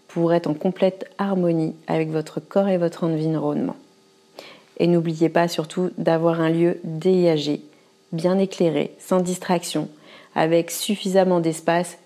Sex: female